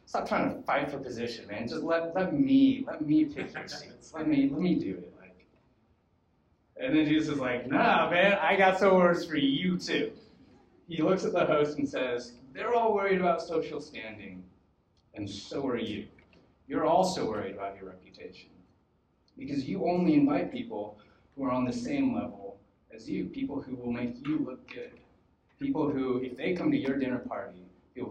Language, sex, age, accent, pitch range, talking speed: English, male, 30-49, American, 115-185 Hz, 190 wpm